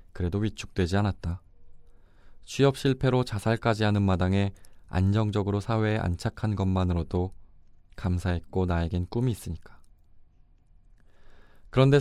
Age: 20-39